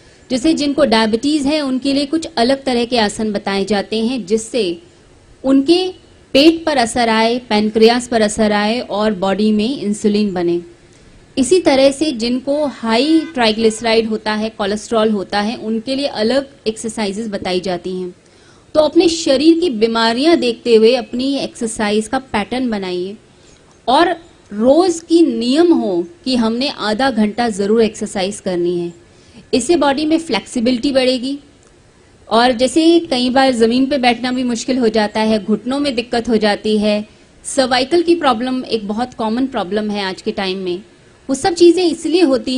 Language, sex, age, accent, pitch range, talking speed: Hindi, female, 30-49, native, 215-275 Hz, 160 wpm